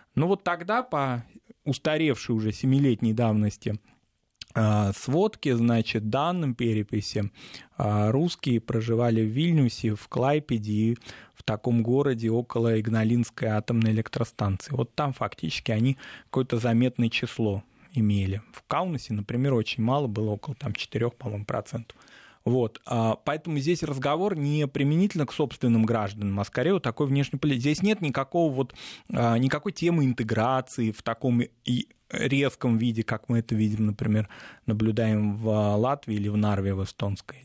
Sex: male